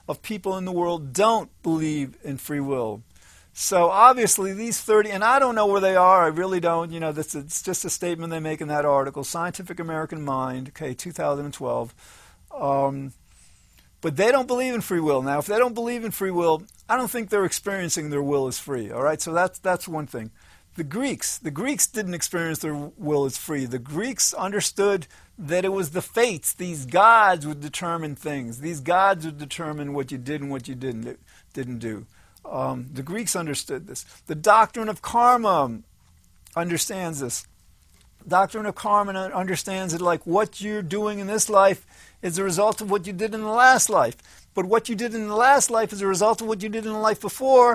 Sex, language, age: male, English, 50-69